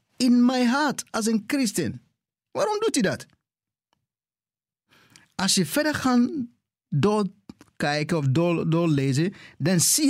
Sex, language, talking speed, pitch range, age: male, Dutch, 115 wpm, 165-235 Hz, 50-69